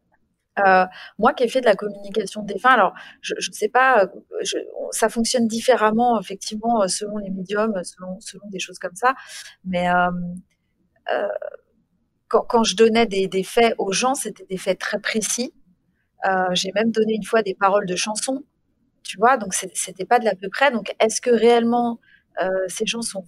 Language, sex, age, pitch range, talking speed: French, female, 30-49, 185-235 Hz, 195 wpm